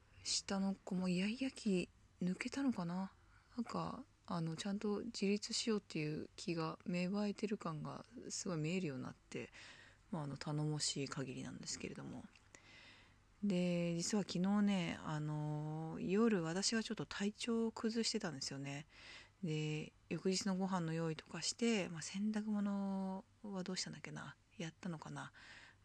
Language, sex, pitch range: Japanese, female, 155-205 Hz